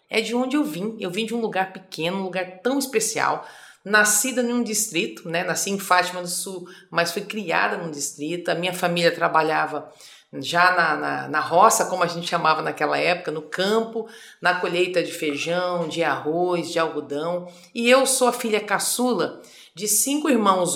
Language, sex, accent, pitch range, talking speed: Portuguese, female, Brazilian, 180-245 Hz, 180 wpm